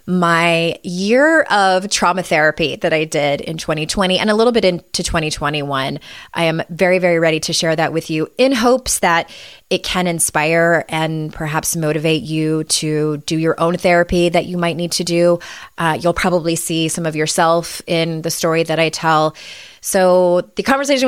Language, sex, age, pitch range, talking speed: English, female, 20-39, 165-205 Hz, 180 wpm